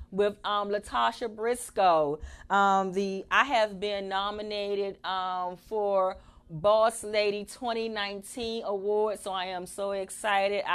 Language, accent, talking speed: English, American, 110 wpm